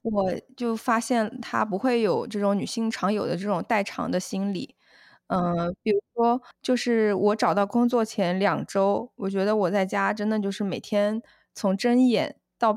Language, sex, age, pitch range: Chinese, female, 20-39, 190-235 Hz